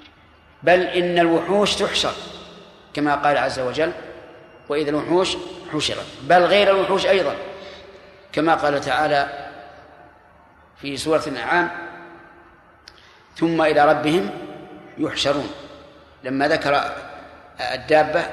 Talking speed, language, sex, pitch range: 90 wpm, Arabic, male, 145-175 Hz